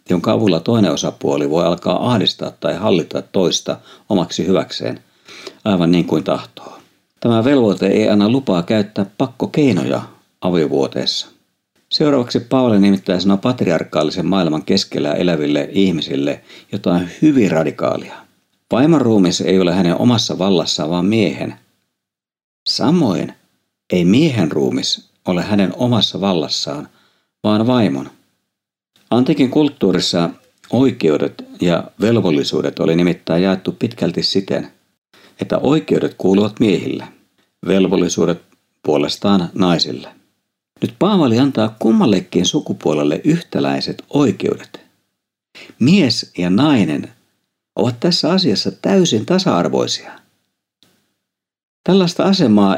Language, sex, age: Finnish, male, 50-69